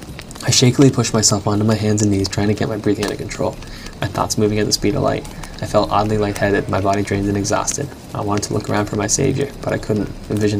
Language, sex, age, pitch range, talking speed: English, male, 10-29, 100-110 Hz, 260 wpm